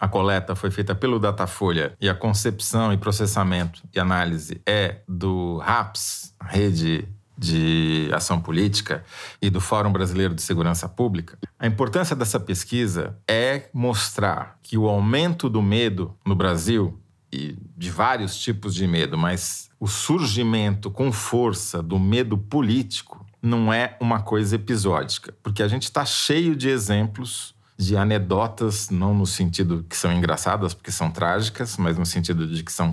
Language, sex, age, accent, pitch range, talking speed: Portuguese, male, 40-59, Brazilian, 90-110 Hz, 150 wpm